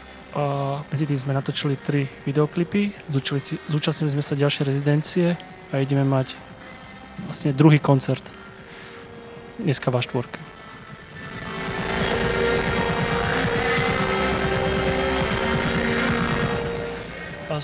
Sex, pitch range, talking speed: male, 135-150 Hz, 70 wpm